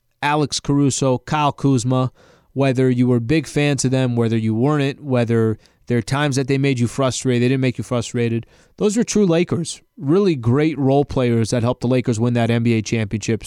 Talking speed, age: 205 wpm, 20-39